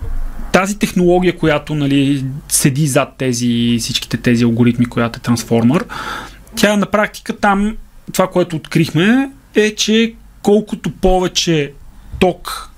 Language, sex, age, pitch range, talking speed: Bulgarian, male, 30-49, 140-180 Hz, 115 wpm